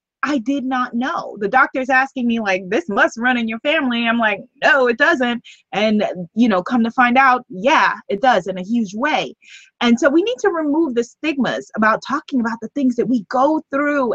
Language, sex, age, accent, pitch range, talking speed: English, female, 20-39, American, 190-260 Hz, 215 wpm